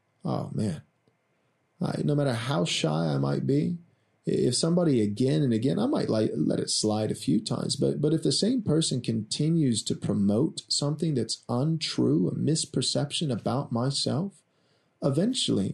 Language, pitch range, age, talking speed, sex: English, 115-155 Hz, 30-49, 150 wpm, male